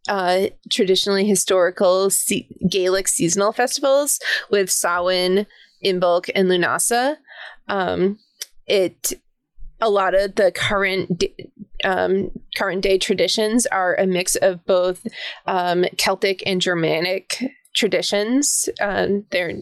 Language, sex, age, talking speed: English, female, 20-39, 110 wpm